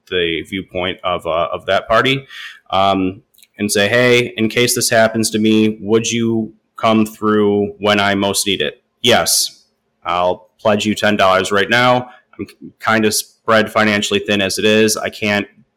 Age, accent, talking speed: 30-49, American, 165 wpm